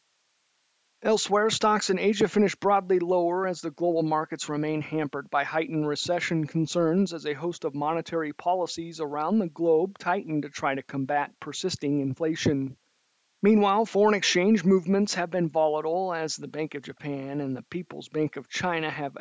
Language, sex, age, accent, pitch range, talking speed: English, male, 50-69, American, 145-180 Hz, 160 wpm